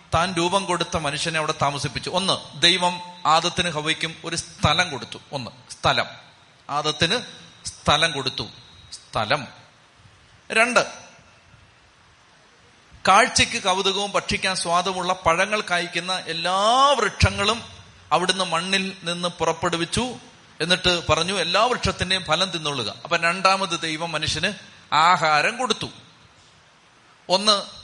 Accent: native